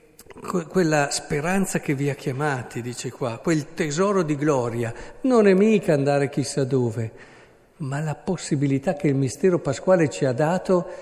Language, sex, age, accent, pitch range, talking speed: Italian, male, 50-69, native, 125-180 Hz, 150 wpm